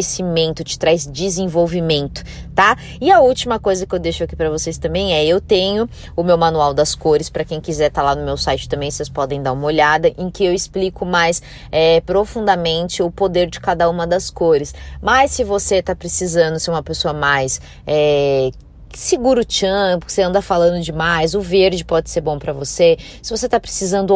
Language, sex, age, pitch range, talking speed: Portuguese, female, 20-39, 165-200 Hz, 195 wpm